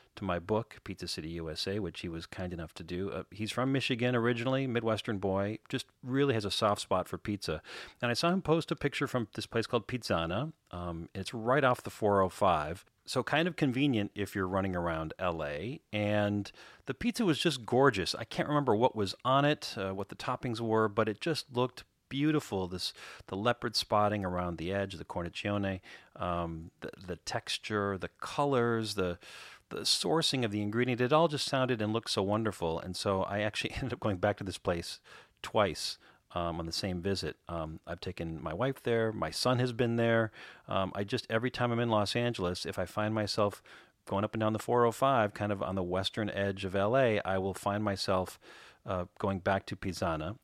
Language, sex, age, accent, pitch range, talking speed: English, male, 40-59, American, 95-125 Hz, 205 wpm